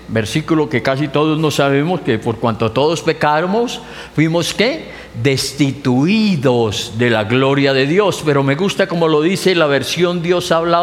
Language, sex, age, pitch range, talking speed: English, male, 50-69, 130-180 Hz, 165 wpm